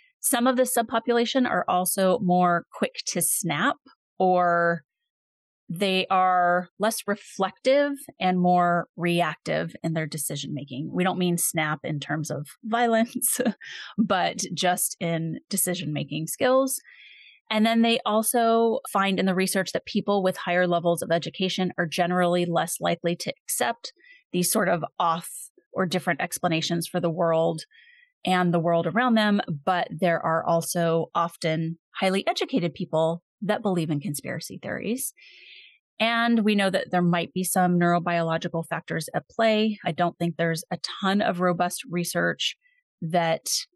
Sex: female